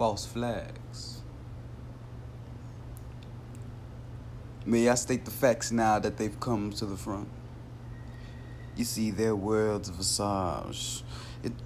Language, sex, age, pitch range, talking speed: English, male, 30-49, 105-120 Hz, 105 wpm